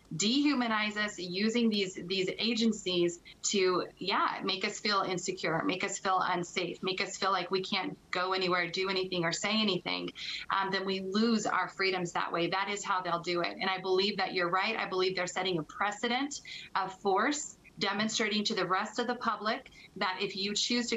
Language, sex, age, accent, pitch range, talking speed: English, female, 30-49, American, 175-200 Hz, 195 wpm